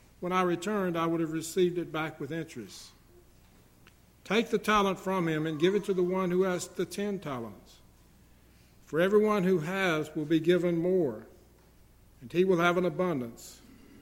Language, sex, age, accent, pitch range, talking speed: English, male, 60-79, American, 140-185 Hz, 175 wpm